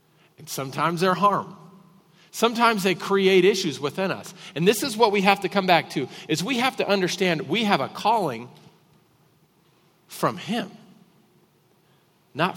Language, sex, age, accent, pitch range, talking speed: English, male, 50-69, American, 160-205 Hz, 150 wpm